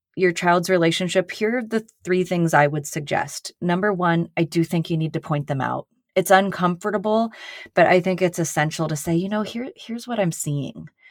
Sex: female